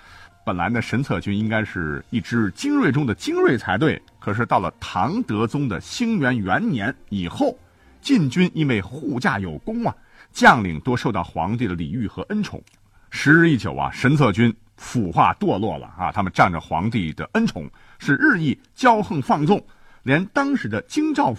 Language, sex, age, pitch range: Chinese, male, 50-69, 95-155 Hz